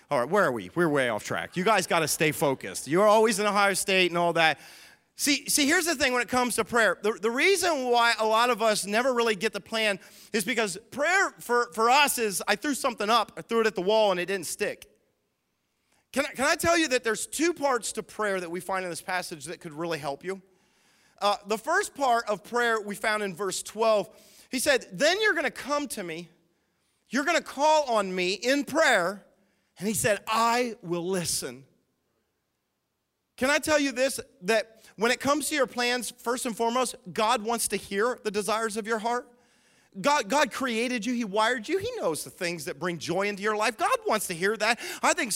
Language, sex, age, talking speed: English, male, 30-49, 225 wpm